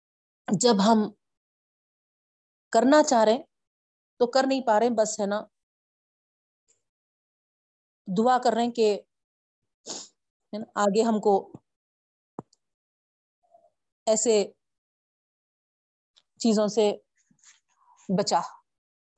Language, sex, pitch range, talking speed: Urdu, female, 210-255 Hz, 75 wpm